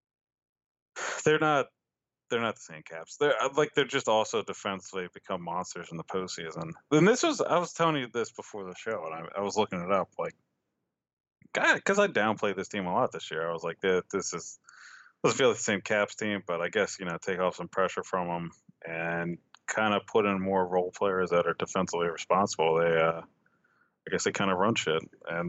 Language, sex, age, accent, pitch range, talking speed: English, male, 20-39, American, 85-125 Hz, 220 wpm